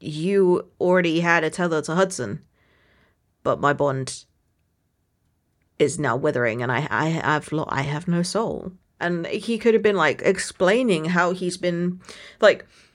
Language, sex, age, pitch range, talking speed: English, female, 30-49, 150-190 Hz, 150 wpm